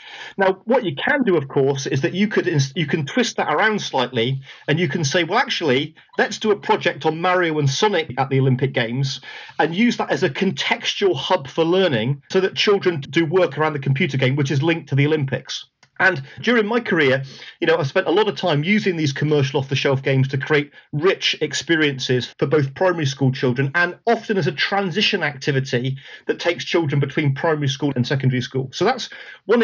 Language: English